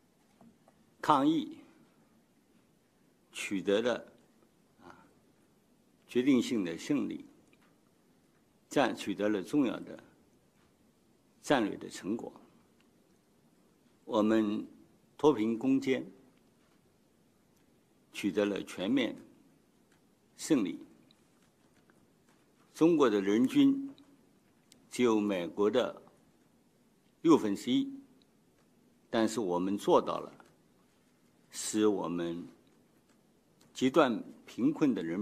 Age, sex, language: 60-79, male, Chinese